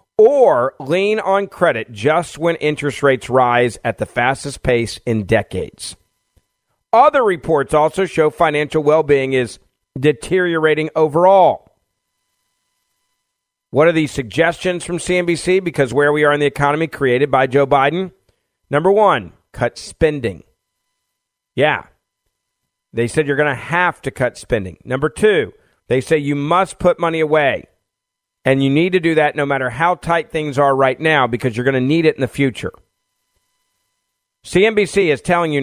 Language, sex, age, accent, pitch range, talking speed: English, male, 40-59, American, 125-165 Hz, 155 wpm